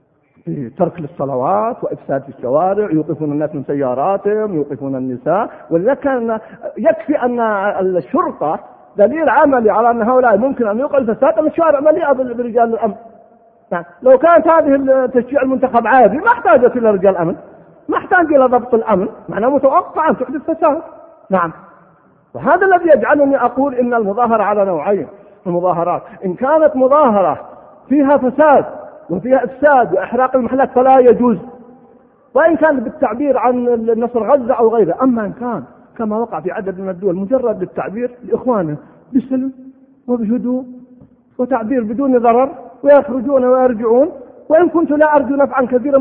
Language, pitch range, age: Arabic, 220-280 Hz, 50-69